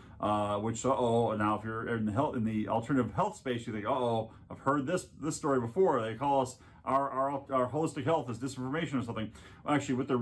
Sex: male